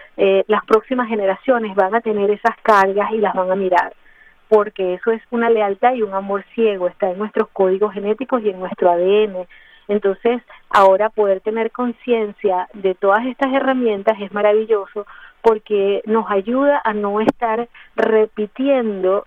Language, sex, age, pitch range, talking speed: English, female, 30-49, 190-220 Hz, 155 wpm